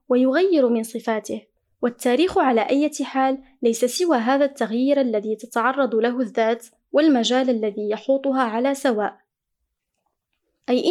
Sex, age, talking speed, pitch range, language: female, 20-39, 115 wpm, 230-275 Hz, Arabic